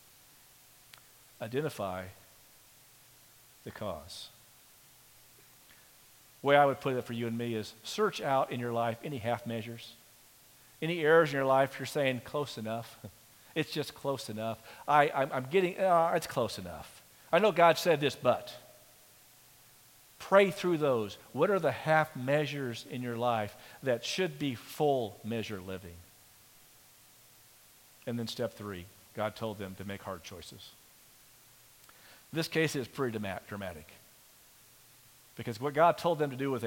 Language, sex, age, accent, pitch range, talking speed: English, male, 50-69, American, 105-150 Hz, 145 wpm